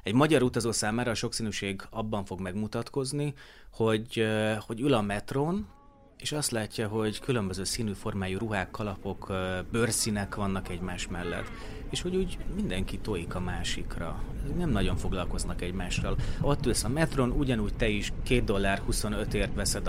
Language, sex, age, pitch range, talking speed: Hungarian, male, 30-49, 95-120 Hz, 145 wpm